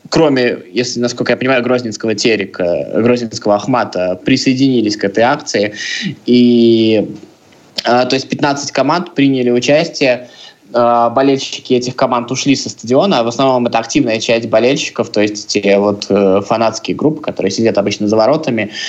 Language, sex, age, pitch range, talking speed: Russian, male, 20-39, 115-140 Hz, 145 wpm